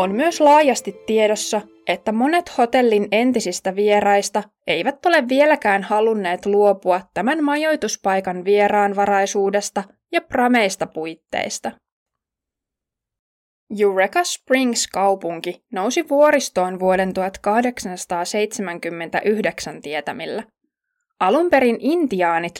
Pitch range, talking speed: 185-260 Hz, 80 wpm